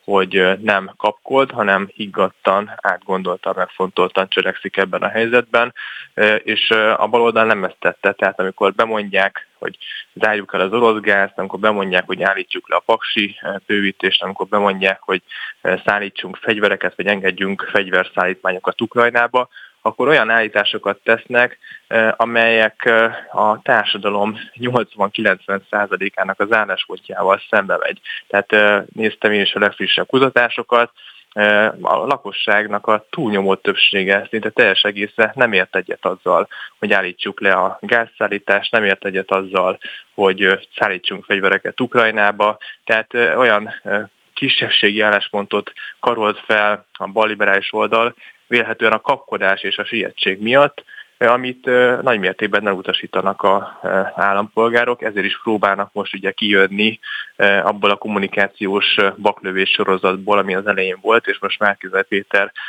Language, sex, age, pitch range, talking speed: Hungarian, male, 20-39, 100-110 Hz, 125 wpm